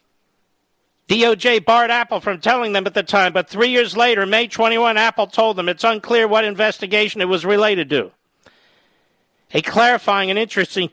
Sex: male